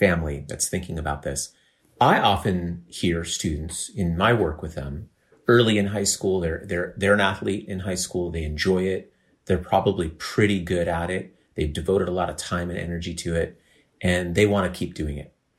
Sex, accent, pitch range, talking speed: male, American, 90-120 Hz, 200 wpm